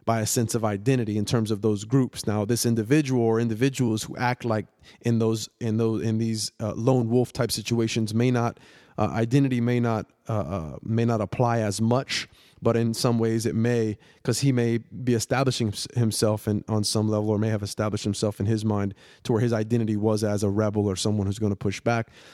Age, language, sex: 30-49, English, male